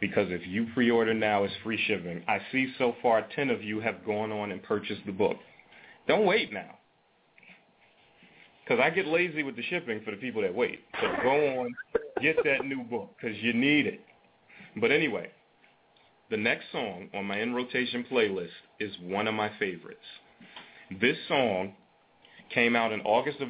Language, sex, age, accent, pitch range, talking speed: English, male, 30-49, American, 100-125 Hz, 180 wpm